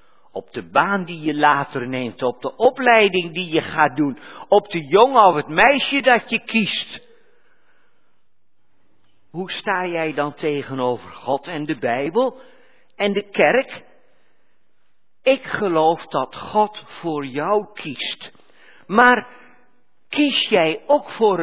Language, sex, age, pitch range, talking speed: Dutch, male, 50-69, 150-245 Hz, 130 wpm